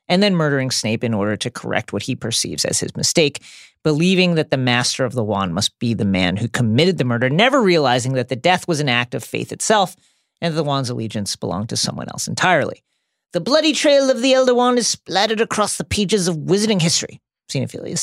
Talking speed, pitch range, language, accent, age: 220 wpm, 130-185 Hz, English, American, 40-59